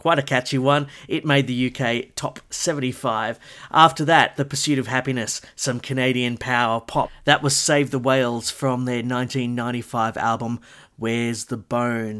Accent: Australian